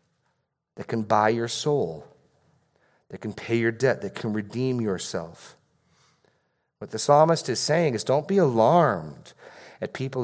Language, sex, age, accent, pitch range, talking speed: English, male, 40-59, American, 115-155 Hz, 145 wpm